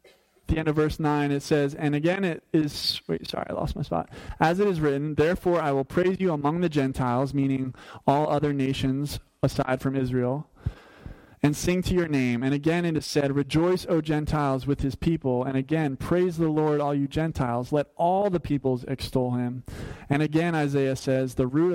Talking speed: 200 wpm